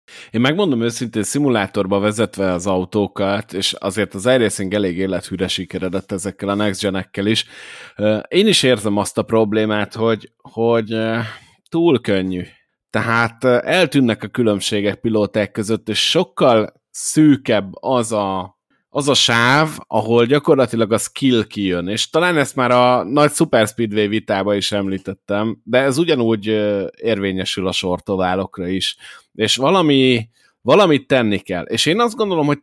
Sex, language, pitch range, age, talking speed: male, Hungarian, 100-125 Hz, 30-49, 145 wpm